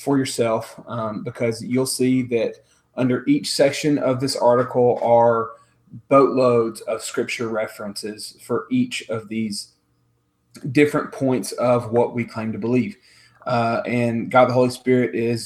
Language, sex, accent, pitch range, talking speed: English, male, American, 115-130 Hz, 145 wpm